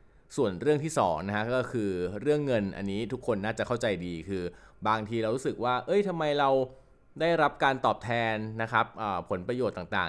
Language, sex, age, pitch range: Thai, male, 20-39, 100-120 Hz